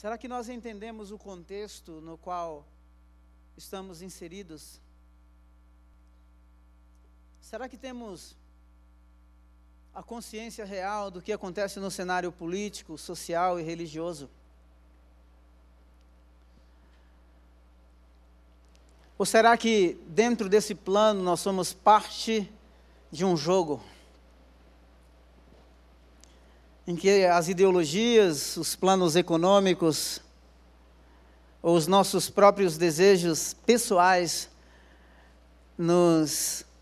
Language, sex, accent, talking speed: Portuguese, male, Brazilian, 85 wpm